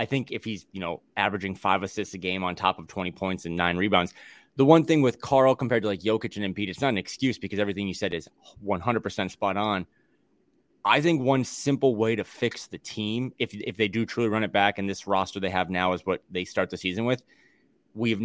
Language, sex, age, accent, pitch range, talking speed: English, male, 30-49, American, 100-120 Hz, 240 wpm